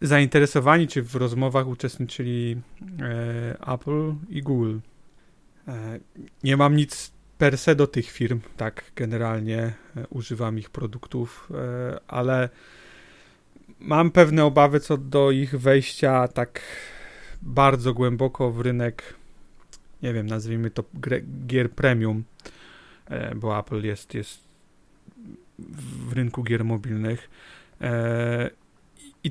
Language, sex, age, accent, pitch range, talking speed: Polish, male, 30-49, native, 115-140 Hz, 100 wpm